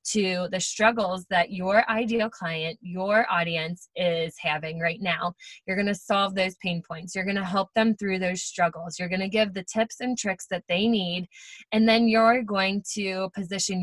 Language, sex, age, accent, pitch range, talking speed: English, female, 20-39, American, 180-225 Hz, 195 wpm